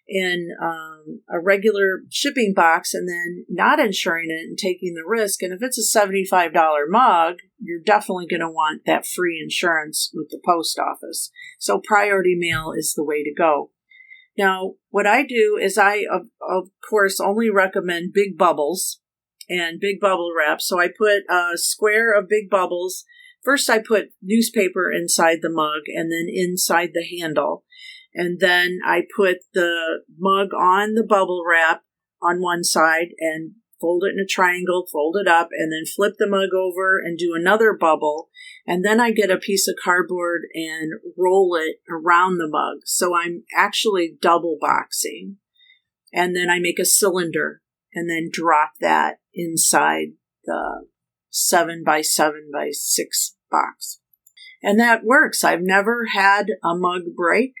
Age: 50-69